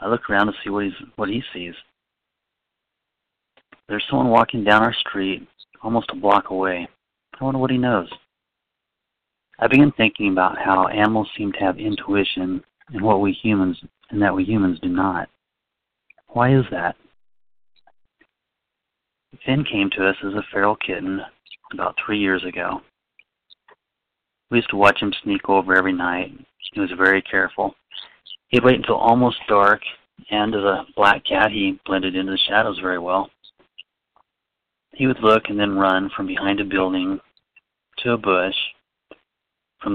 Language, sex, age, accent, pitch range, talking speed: English, male, 30-49, American, 95-110 Hz, 155 wpm